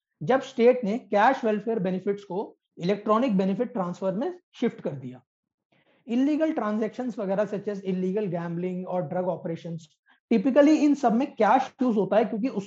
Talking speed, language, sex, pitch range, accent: 65 wpm, Hindi, male, 185-245 Hz, native